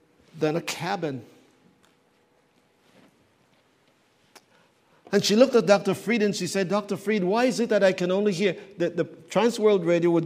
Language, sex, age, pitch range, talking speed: English, male, 50-69, 130-180 Hz, 165 wpm